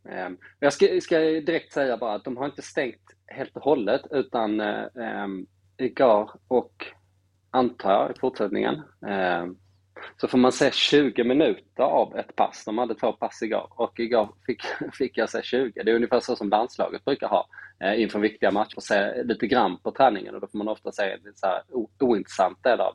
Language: Swedish